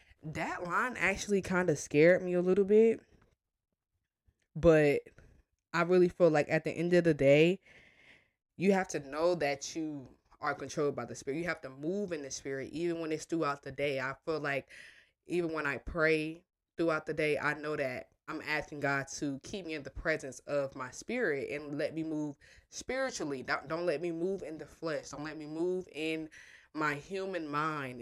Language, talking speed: English, 195 wpm